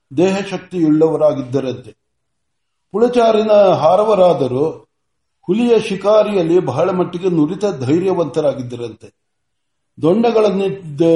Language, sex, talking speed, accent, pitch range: Kannada, male, 60 wpm, native, 155-195 Hz